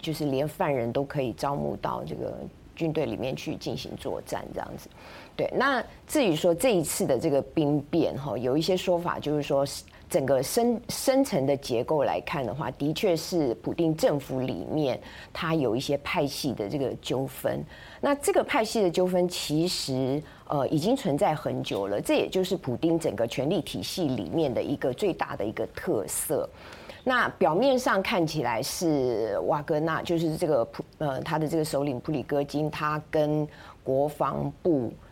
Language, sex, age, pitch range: Chinese, female, 30-49, 140-170 Hz